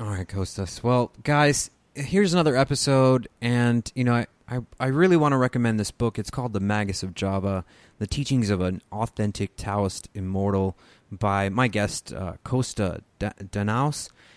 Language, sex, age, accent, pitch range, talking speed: English, male, 30-49, American, 100-130 Hz, 165 wpm